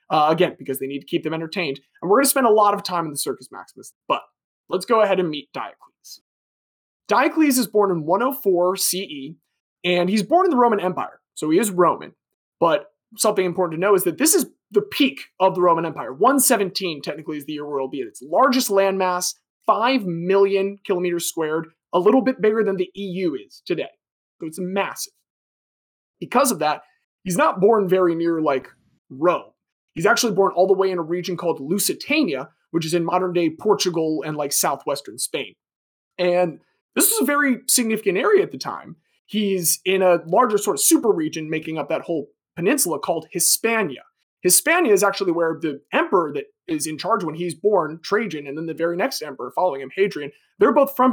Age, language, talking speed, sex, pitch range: 20-39, English, 200 wpm, male, 170-230 Hz